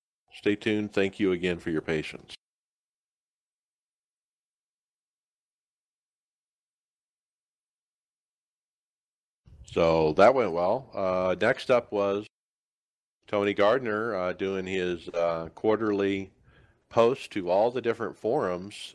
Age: 50-69